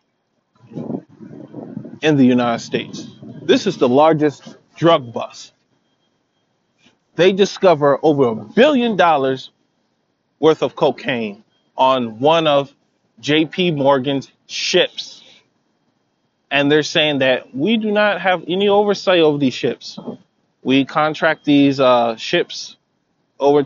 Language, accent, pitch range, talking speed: English, American, 125-165 Hz, 110 wpm